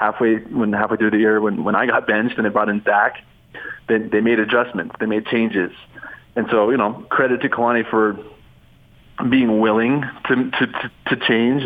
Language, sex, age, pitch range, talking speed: English, male, 20-39, 105-120 Hz, 190 wpm